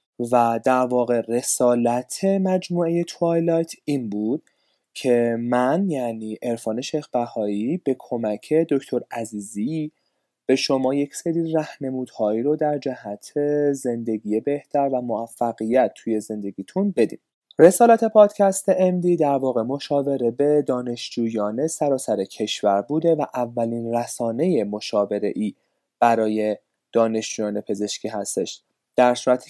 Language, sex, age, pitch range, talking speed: Persian, male, 20-39, 115-170 Hz, 110 wpm